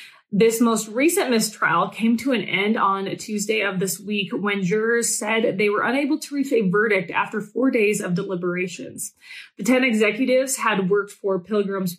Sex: female